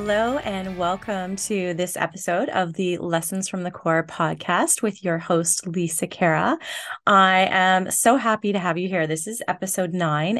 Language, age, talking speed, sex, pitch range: English, 20-39, 175 wpm, female, 165-195 Hz